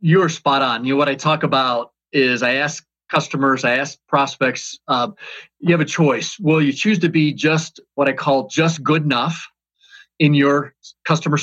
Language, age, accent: English, 30-49, American